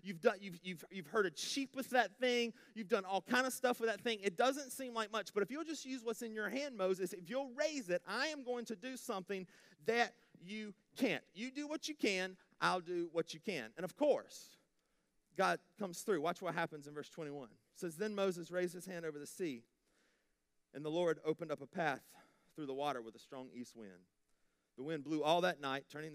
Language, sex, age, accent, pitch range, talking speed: English, male, 30-49, American, 130-205 Hz, 230 wpm